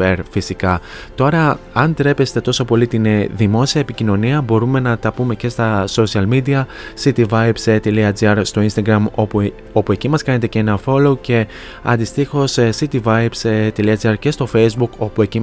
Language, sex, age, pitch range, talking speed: Greek, male, 20-39, 105-125 Hz, 140 wpm